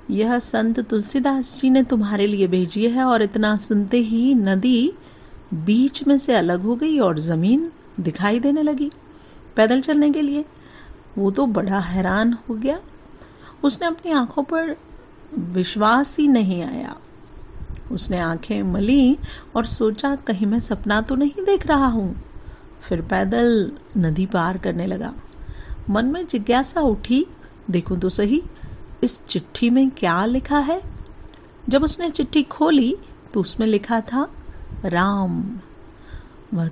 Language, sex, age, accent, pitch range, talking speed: Hindi, female, 40-59, native, 195-270 Hz, 140 wpm